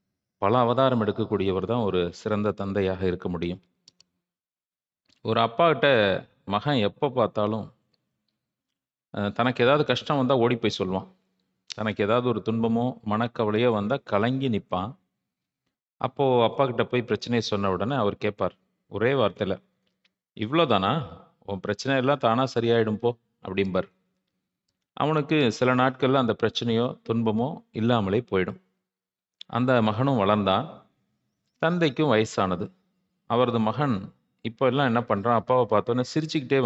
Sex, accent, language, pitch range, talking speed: male, native, Tamil, 100-130 Hz, 110 wpm